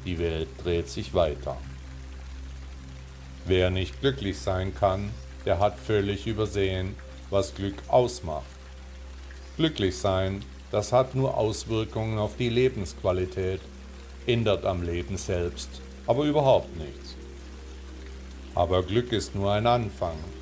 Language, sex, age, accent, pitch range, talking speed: German, male, 50-69, German, 70-105 Hz, 115 wpm